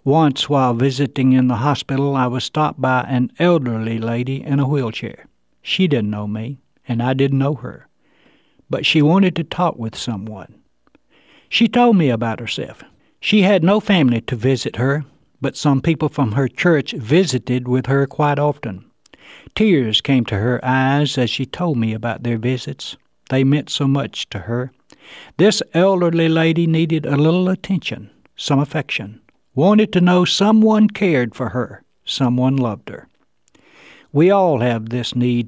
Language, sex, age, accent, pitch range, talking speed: English, male, 60-79, American, 125-160 Hz, 165 wpm